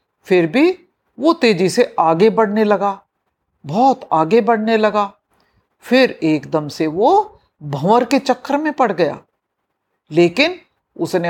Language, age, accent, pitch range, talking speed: Hindi, 60-79, native, 175-275 Hz, 125 wpm